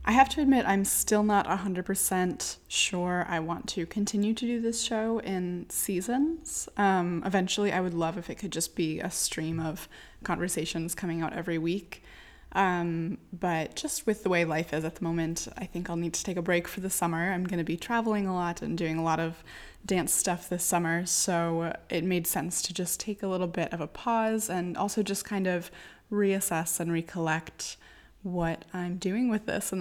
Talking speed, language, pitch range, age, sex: 205 wpm, English, 170-200 Hz, 20-39, female